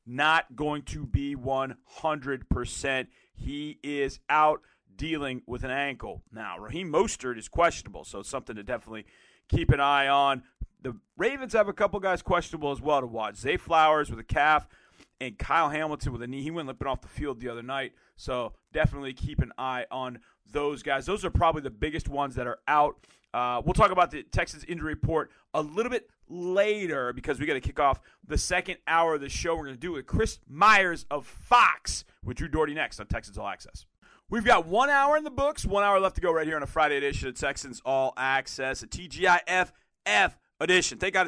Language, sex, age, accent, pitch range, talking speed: English, male, 40-59, American, 125-175 Hz, 205 wpm